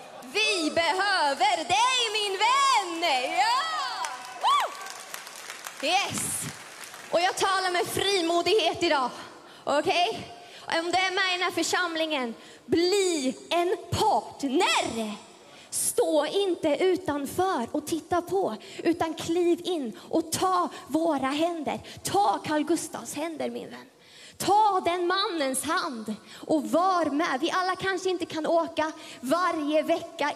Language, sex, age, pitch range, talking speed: English, female, 20-39, 310-370 Hz, 115 wpm